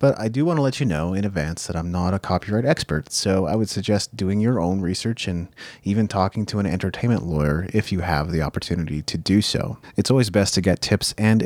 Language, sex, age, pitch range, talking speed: English, male, 30-49, 85-105 Hz, 240 wpm